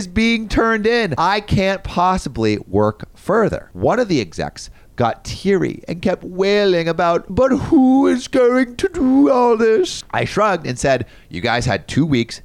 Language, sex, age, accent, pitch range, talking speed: English, male, 30-49, American, 100-155 Hz, 170 wpm